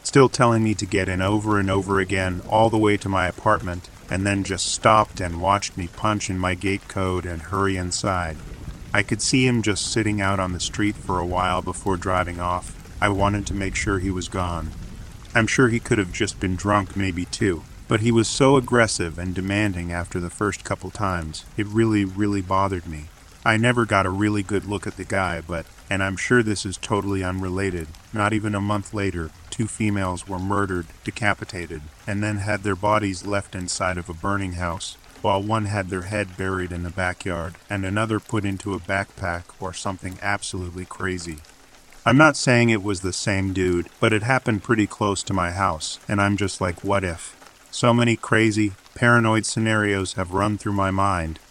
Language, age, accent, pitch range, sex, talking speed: English, 40-59, American, 90-105 Hz, male, 200 wpm